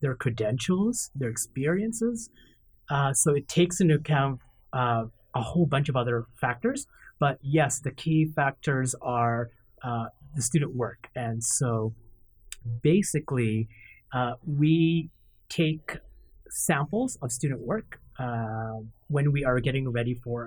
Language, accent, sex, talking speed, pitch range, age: English, American, male, 130 wpm, 115-145 Hz, 30-49